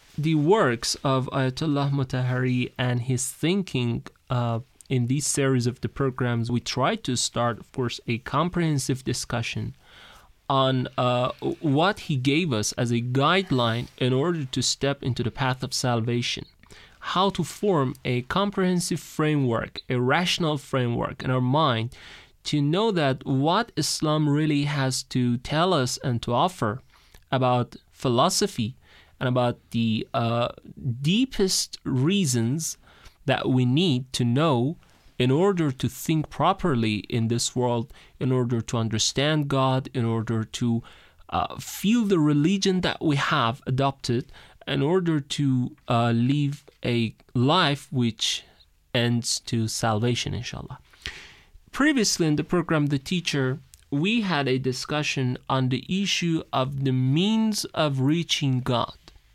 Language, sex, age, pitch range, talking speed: Persian, male, 30-49, 125-155 Hz, 135 wpm